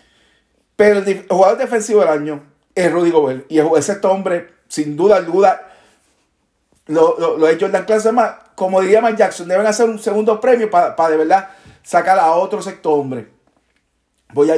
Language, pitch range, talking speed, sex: Spanish, 175-240 Hz, 175 wpm, male